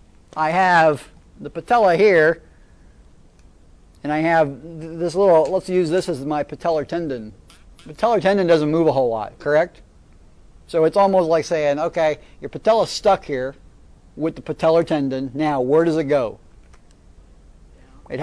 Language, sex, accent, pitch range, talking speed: English, male, American, 130-170 Hz, 150 wpm